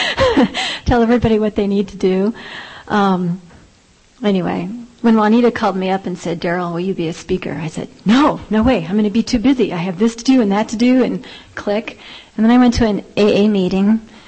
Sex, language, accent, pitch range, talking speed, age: female, English, American, 175-220 Hz, 220 wpm, 40-59